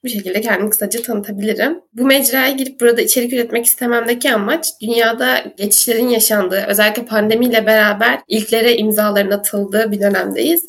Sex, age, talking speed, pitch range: female, 10-29, 135 wpm, 215-240 Hz